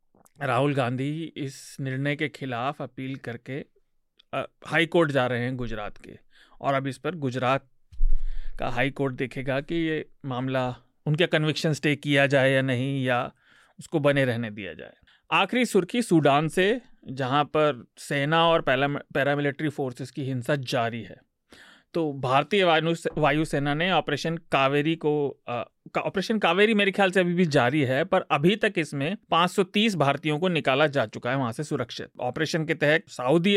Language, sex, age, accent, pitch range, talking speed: Hindi, male, 30-49, native, 135-165 Hz, 165 wpm